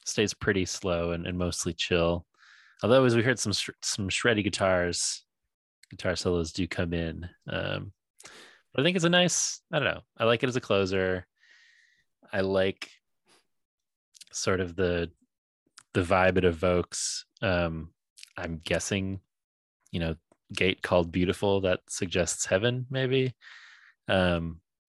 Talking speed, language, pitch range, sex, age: 140 wpm, English, 85-100 Hz, male, 20-39